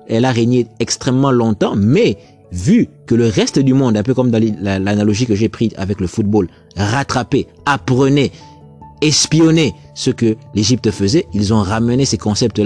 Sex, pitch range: male, 105-145 Hz